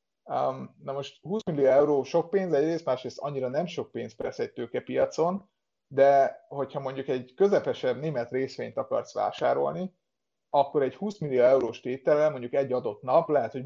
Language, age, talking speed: Hungarian, 30-49, 165 wpm